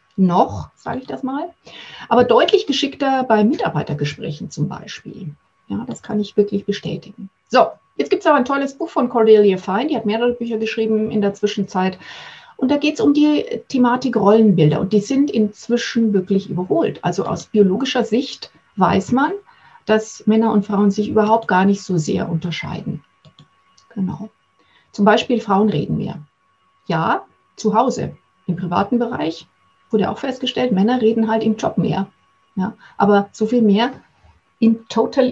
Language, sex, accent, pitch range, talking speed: German, female, German, 190-235 Hz, 165 wpm